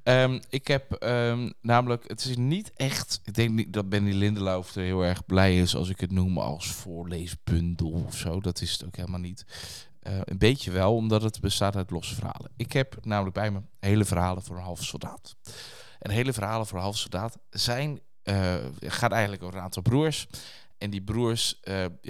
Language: Dutch